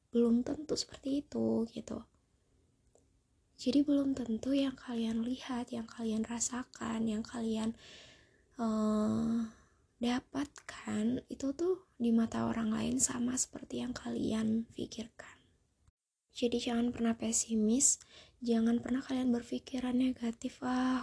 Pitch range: 225-255 Hz